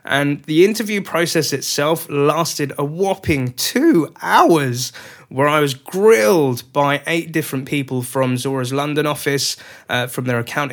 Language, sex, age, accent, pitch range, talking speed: English, male, 20-39, British, 125-150 Hz, 145 wpm